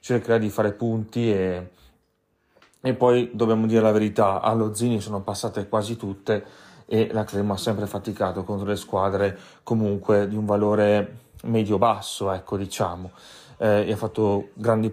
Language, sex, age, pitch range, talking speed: Italian, male, 30-49, 105-120 Hz, 155 wpm